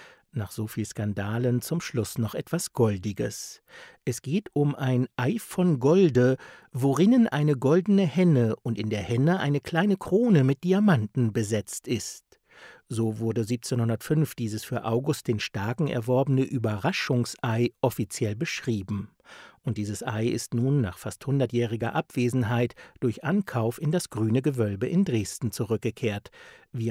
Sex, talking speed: male, 140 wpm